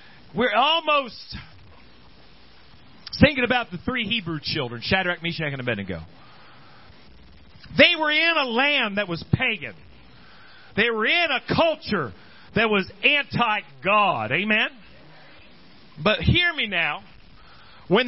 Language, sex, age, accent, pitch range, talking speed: English, male, 40-59, American, 195-295 Hz, 115 wpm